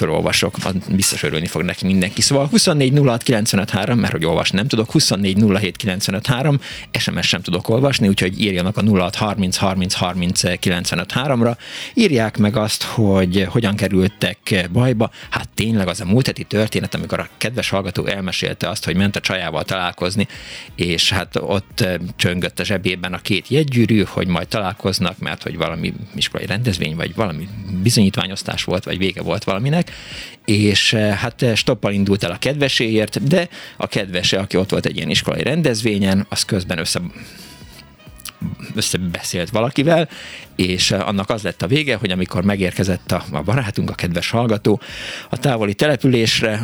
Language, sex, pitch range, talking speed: Hungarian, male, 90-115 Hz, 140 wpm